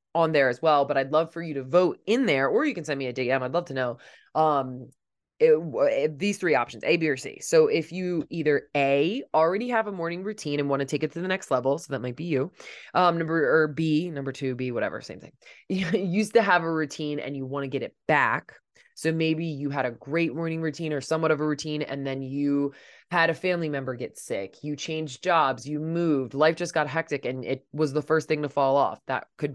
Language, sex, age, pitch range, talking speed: English, female, 20-39, 140-170 Hz, 250 wpm